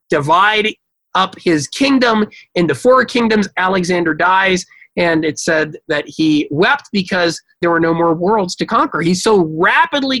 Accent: American